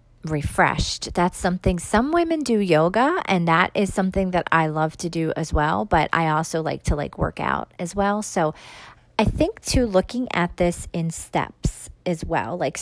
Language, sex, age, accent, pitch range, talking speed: English, female, 40-59, American, 165-215 Hz, 185 wpm